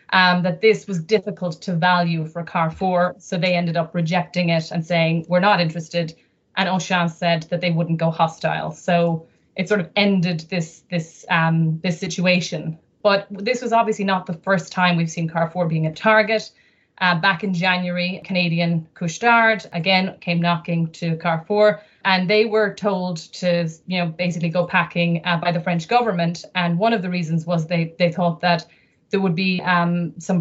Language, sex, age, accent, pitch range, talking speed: English, female, 30-49, Irish, 165-185 Hz, 185 wpm